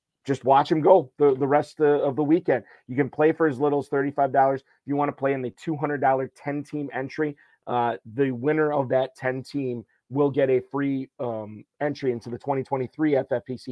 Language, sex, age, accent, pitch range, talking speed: English, male, 30-49, American, 125-145 Hz, 195 wpm